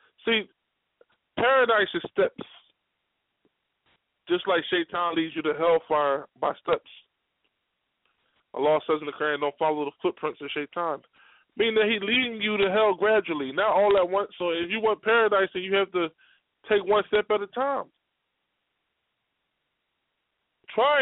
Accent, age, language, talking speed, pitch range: American, 20-39, English, 150 wpm, 180-245 Hz